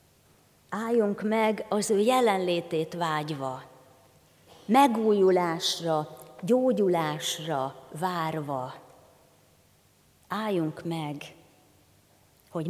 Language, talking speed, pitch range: Hungarian, 55 wpm, 155-205 Hz